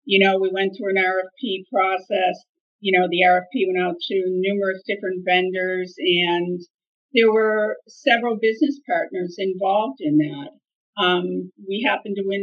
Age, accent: 50-69, American